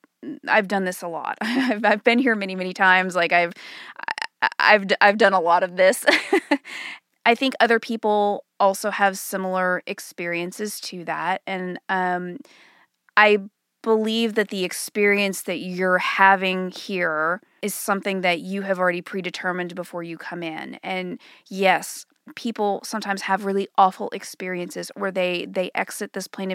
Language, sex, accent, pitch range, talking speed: English, female, American, 180-200 Hz, 150 wpm